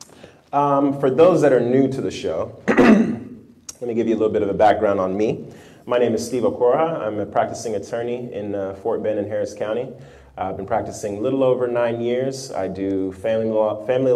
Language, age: Japanese, 20-39